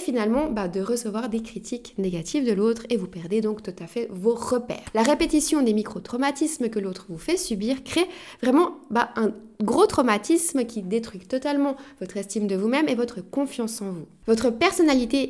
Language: French